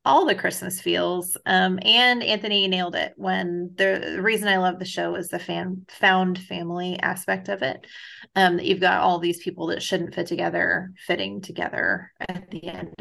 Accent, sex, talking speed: American, female, 190 wpm